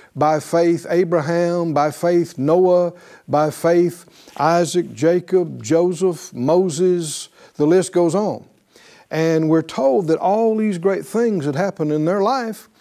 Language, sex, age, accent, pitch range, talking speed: English, male, 60-79, American, 155-195 Hz, 135 wpm